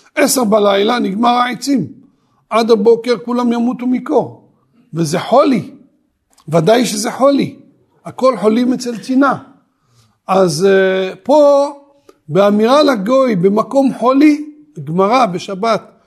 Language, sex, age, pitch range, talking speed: Hebrew, male, 50-69, 210-280 Hz, 100 wpm